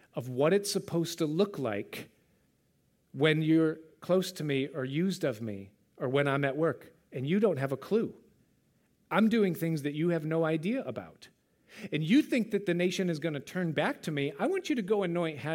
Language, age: English, 40-59